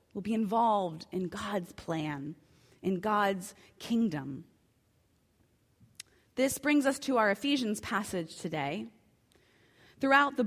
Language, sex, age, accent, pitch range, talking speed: English, female, 30-49, American, 190-250 Hz, 110 wpm